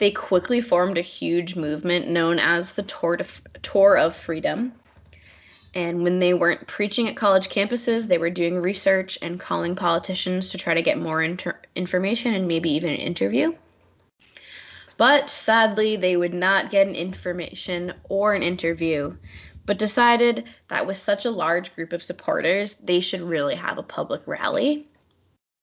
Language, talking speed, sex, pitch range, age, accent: English, 155 wpm, female, 170-205 Hz, 20-39, American